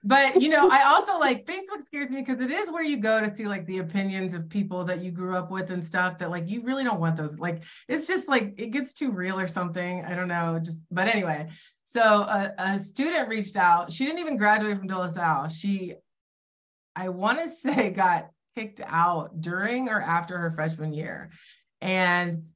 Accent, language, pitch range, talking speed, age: American, English, 160-205 Hz, 215 wpm, 30-49